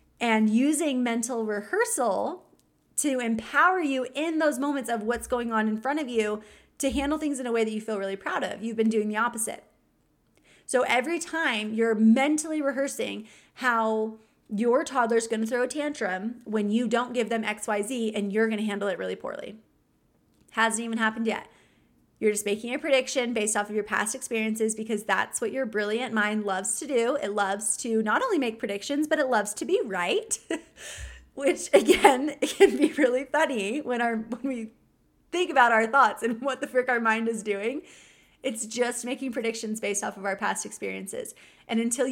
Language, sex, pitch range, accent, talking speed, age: English, female, 215-270 Hz, American, 190 wpm, 30-49